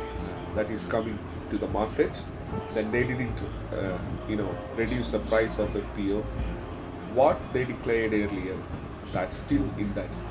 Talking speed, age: 145 wpm, 40-59